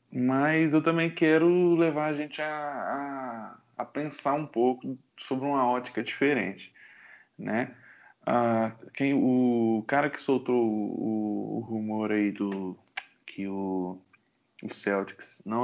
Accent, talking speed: Brazilian, 130 wpm